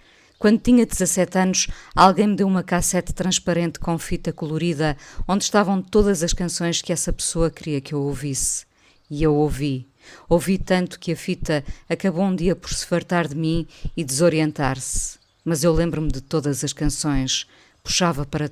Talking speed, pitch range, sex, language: 170 wpm, 150-175 Hz, female, Portuguese